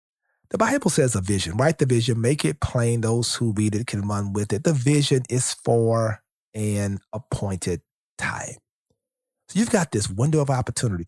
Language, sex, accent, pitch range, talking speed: English, male, American, 110-140 Hz, 180 wpm